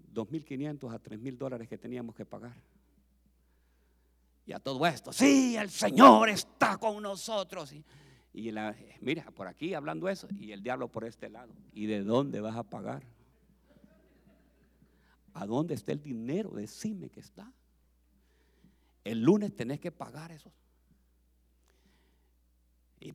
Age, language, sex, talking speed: 50-69, Spanish, male, 135 wpm